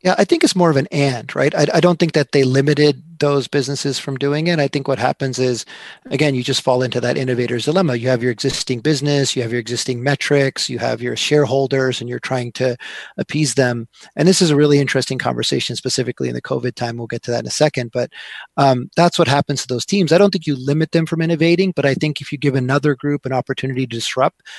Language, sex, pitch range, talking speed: English, male, 125-145 Hz, 245 wpm